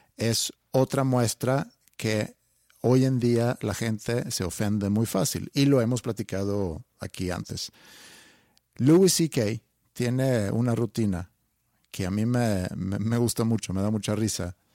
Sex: male